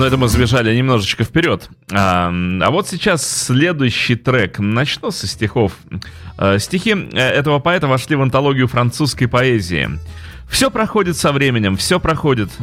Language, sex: Russian, male